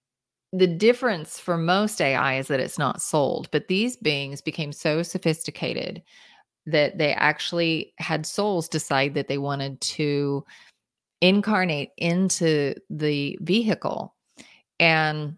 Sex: female